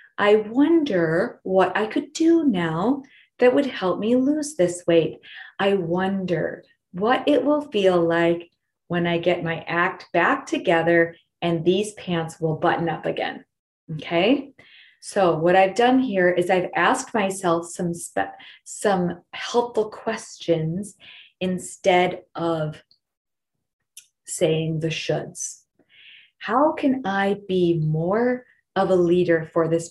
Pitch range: 170-240 Hz